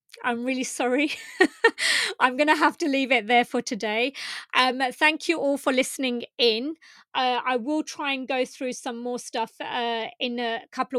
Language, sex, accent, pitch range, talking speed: English, female, British, 225-260 Hz, 180 wpm